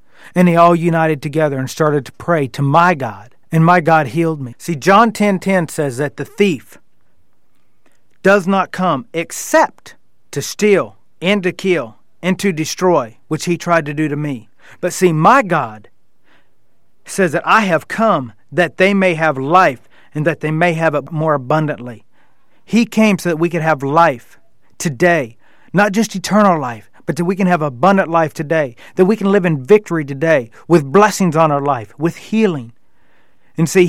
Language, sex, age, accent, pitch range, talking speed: English, male, 40-59, American, 145-185 Hz, 180 wpm